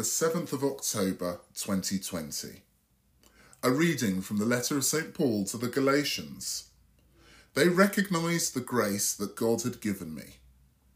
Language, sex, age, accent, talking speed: English, female, 30-49, British, 135 wpm